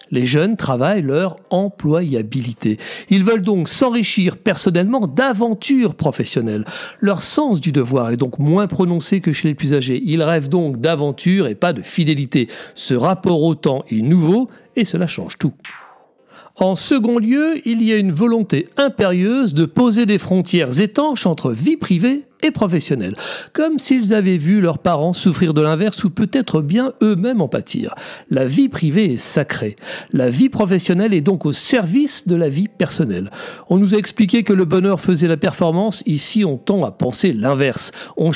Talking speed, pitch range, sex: 170 wpm, 155-220 Hz, male